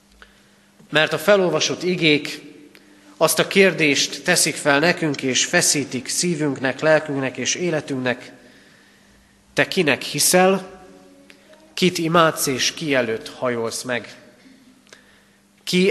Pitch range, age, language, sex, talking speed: 130-175 Hz, 30-49, Hungarian, male, 100 wpm